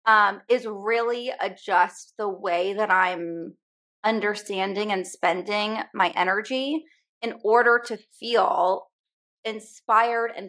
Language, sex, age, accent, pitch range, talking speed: English, female, 20-39, American, 190-235 Hz, 110 wpm